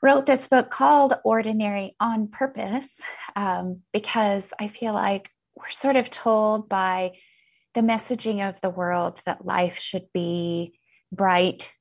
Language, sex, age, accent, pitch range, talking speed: English, female, 20-39, American, 180-215 Hz, 135 wpm